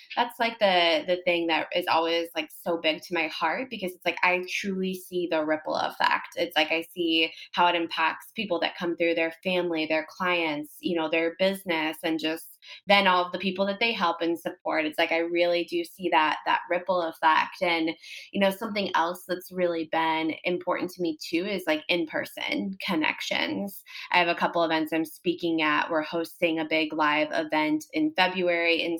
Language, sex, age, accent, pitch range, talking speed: English, female, 20-39, American, 165-200 Hz, 205 wpm